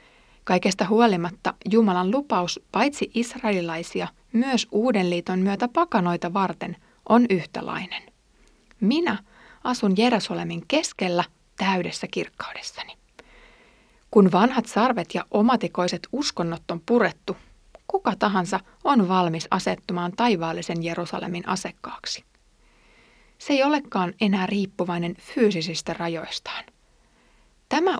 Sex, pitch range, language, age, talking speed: female, 175-235 Hz, Finnish, 30-49, 90 wpm